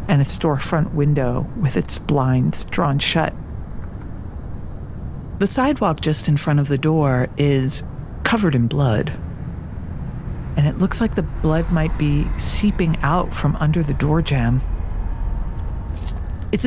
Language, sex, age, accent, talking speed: English, female, 50-69, American, 135 wpm